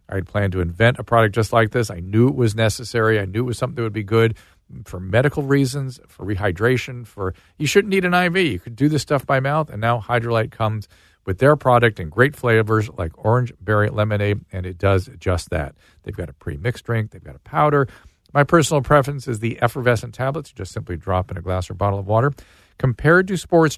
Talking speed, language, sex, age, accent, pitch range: 225 wpm, English, male, 50-69, American, 100-135 Hz